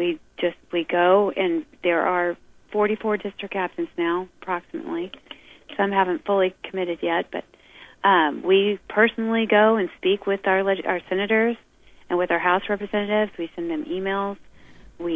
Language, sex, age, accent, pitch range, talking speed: English, female, 30-49, American, 175-205 Hz, 150 wpm